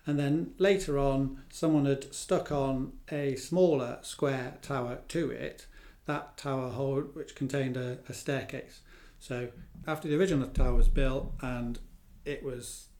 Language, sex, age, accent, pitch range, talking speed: English, male, 40-59, British, 125-145 Hz, 150 wpm